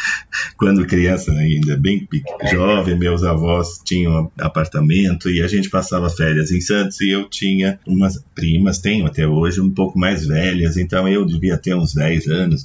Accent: Brazilian